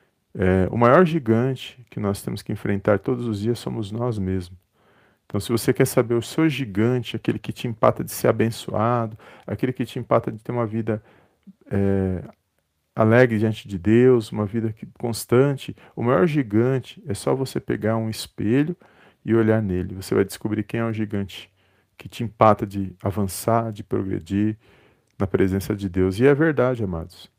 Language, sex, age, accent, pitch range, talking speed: Portuguese, male, 40-59, Brazilian, 100-120 Hz, 175 wpm